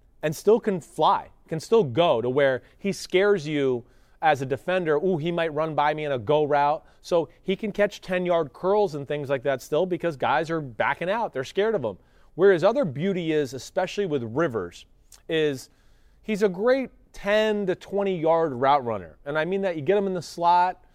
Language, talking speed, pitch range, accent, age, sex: English, 205 wpm, 145-180 Hz, American, 30-49, male